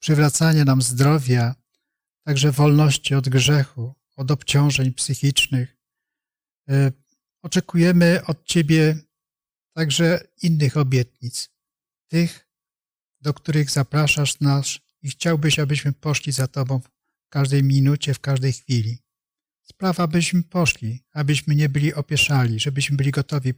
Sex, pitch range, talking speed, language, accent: male, 130-155 Hz, 110 wpm, Polish, native